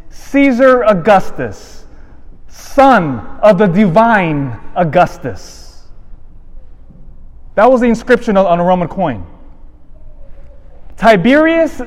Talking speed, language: 80 wpm, English